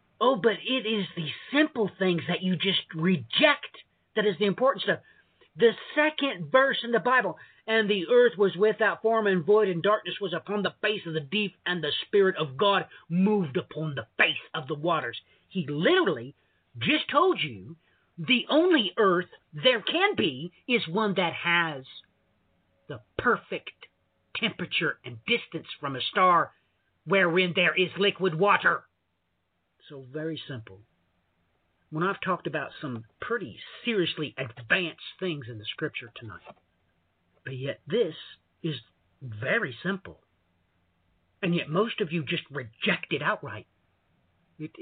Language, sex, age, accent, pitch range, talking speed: English, male, 50-69, American, 125-205 Hz, 150 wpm